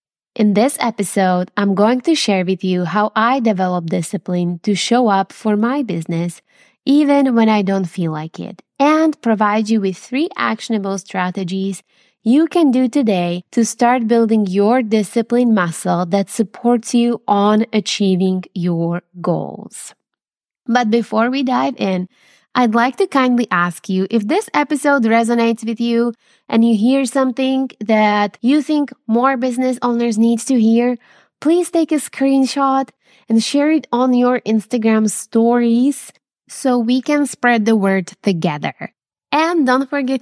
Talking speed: 150 wpm